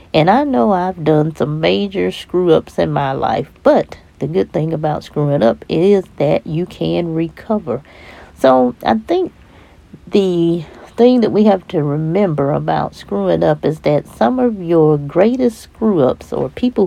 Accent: American